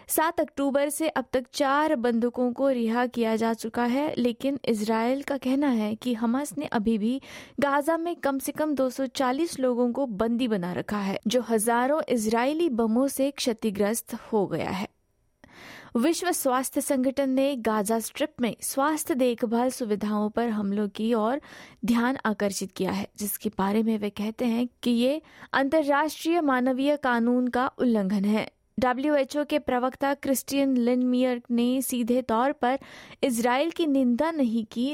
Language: Hindi